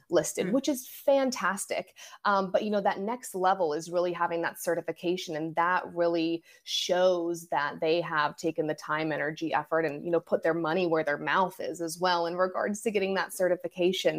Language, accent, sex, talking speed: English, American, female, 195 wpm